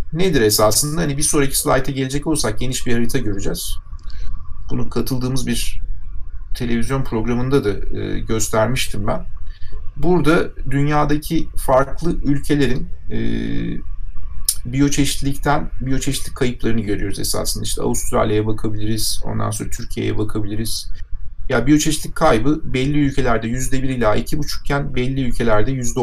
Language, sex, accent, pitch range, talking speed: Turkish, male, native, 105-135 Hz, 115 wpm